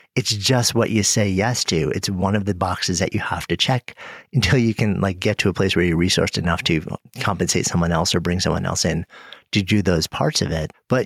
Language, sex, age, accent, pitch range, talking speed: English, male, 40-59, American, 90-115 Hz, 245 wpm